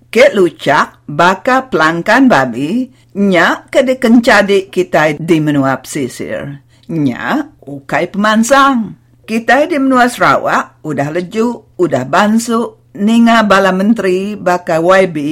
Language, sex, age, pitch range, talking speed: English, female, 50-69, 150-230 Hz, 105 wpm